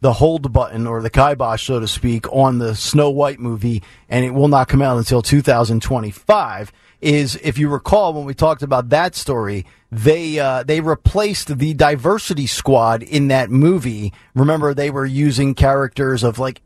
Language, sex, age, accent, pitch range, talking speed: English, male, 40-59, American, 120-145 Hz, 175 wpm